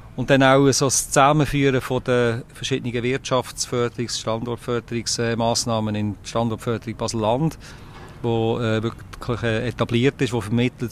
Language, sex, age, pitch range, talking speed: German, male, 40-59, 110-125 Hz, 125 wpm